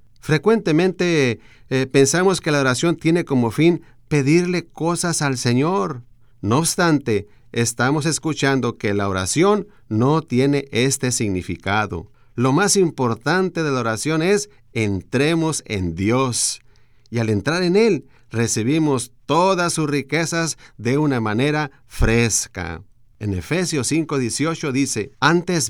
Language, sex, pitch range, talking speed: Spanish, male, 120-160 Hz, 120 wpm